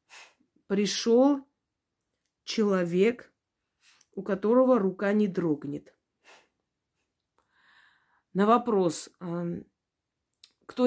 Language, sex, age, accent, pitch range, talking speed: Russian, female, 30-49, native, 170-225 Hz, 55 wpm